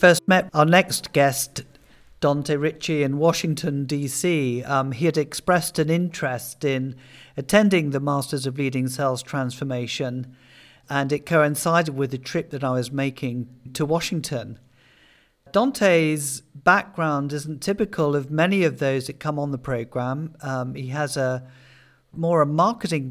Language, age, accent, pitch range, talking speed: English, 50-69, British, 130-160 Hz, 145 wpm